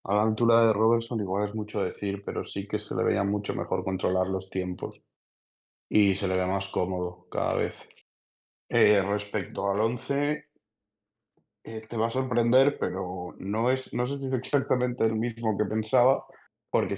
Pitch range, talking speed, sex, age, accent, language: 100-115 Hz, 175 wpm, male, 20-39, Spanish, Spanish